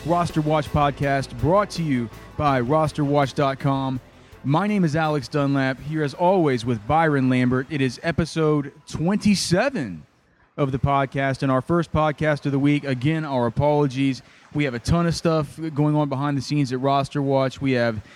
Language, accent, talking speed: English, American, 170 wpm